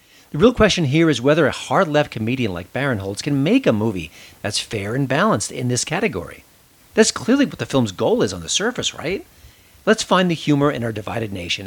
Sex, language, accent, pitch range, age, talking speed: male, English, American, 105-155 Hz, 40-59, 215 wpm